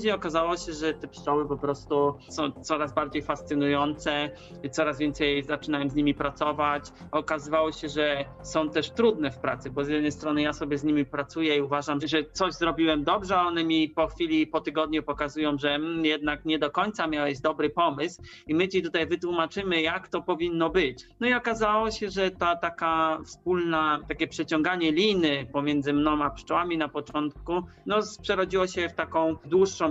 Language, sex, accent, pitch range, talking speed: Polish, male, native, 150-170 Hz, 175 wpm